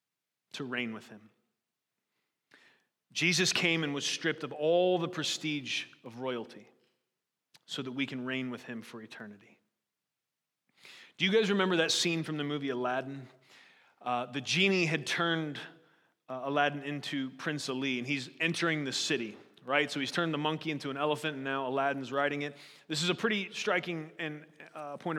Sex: male